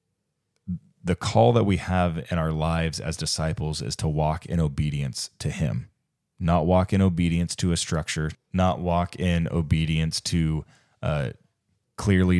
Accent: American